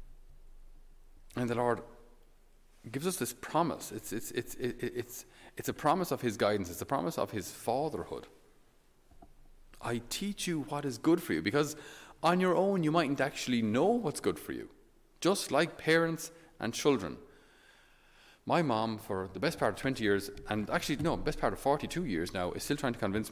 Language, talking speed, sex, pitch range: English, 185 wpm, male, 110-155 Hz